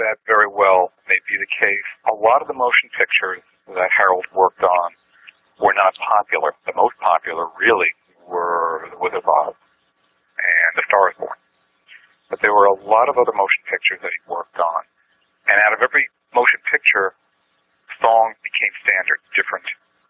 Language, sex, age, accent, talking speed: English, male, 50-69, American, 170 wpm